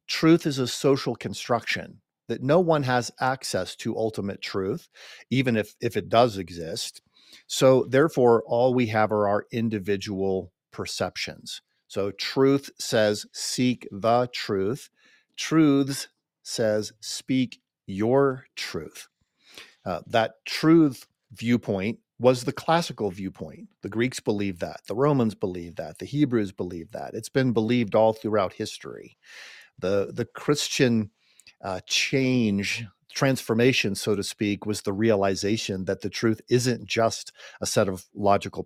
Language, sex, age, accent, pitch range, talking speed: English, male, 50-69, American, 105-135 Hz, 135 wpm